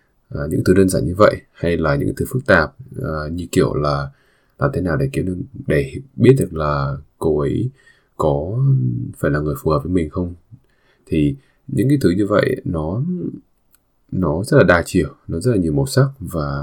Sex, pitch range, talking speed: male, 75-125 Hz, 205 wpm